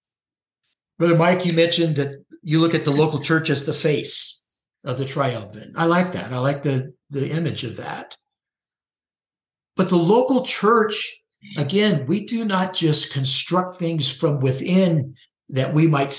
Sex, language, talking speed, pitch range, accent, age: male, English, 160 wpm, 150-195 Hz, American, 50-69